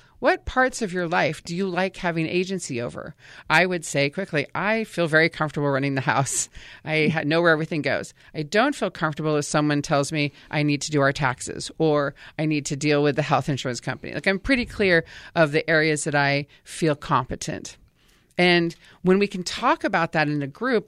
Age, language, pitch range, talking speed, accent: 40-59, English, 150-190 Hz, 205 wpm, American